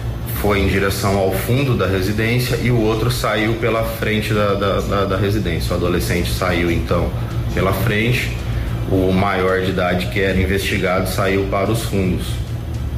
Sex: male